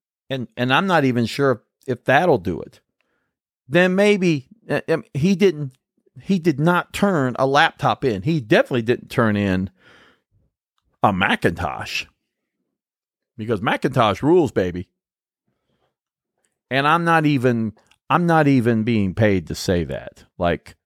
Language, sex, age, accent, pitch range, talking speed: English, male, 40-59, American, 110-165 Hz, 130 wpm